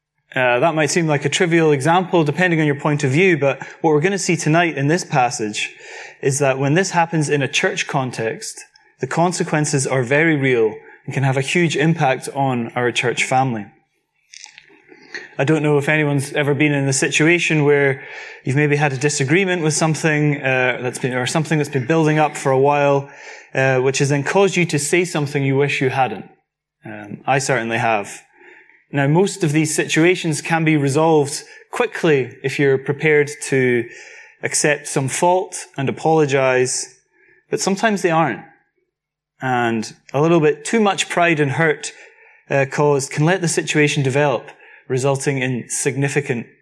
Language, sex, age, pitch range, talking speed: English, male, 20-39, 135-165 Hz, 175 wpm